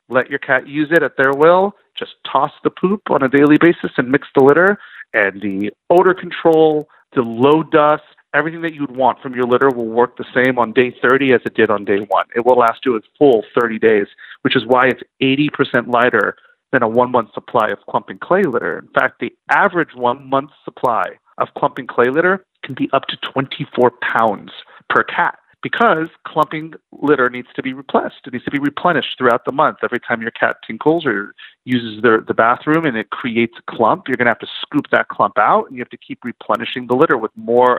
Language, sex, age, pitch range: English, male, 40-59, 125-160 Hz